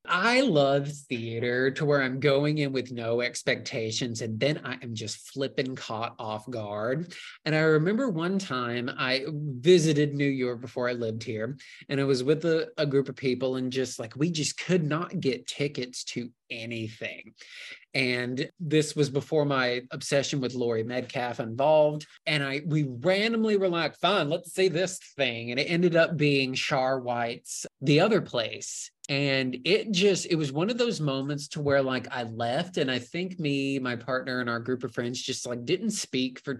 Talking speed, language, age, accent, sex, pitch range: 185 wpm, English, 20-39, American, male, 120-155 Hz